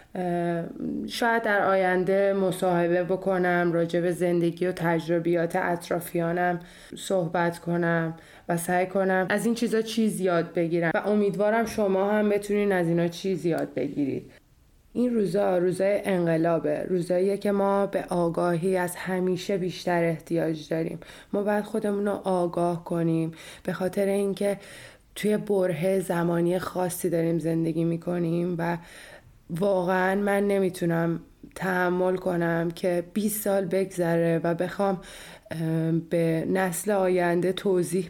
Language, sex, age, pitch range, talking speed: Persian, female, 20-39, 170-190 Hz, 120 wpm